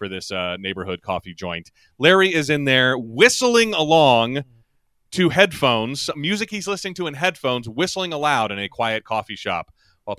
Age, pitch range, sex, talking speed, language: 30-49, 105-145 Hz, male, 165 wpm, English